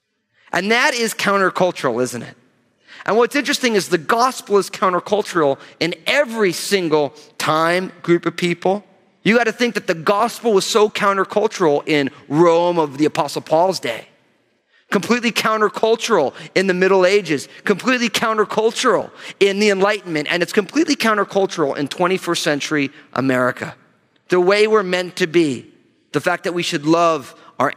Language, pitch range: English, 155-225 Hz